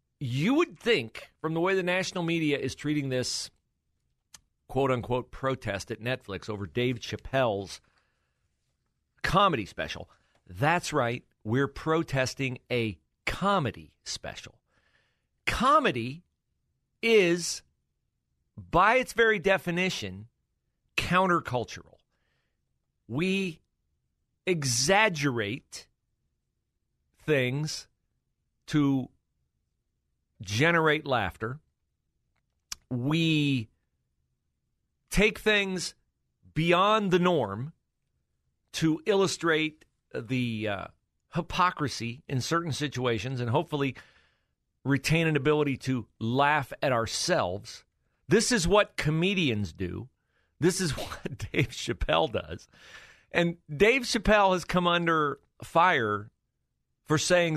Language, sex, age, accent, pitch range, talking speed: English, male, 50-69, American, 110-170 Hz, 90 wpm